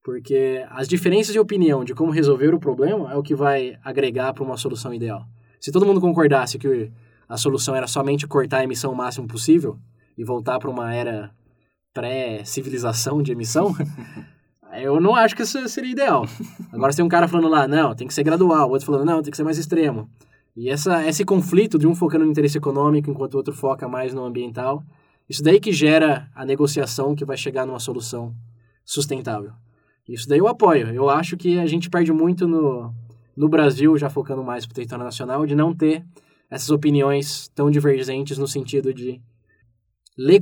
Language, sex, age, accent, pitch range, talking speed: Portuguese, male, 10-29, Brazilian, 130-160 Hz, 195 wpm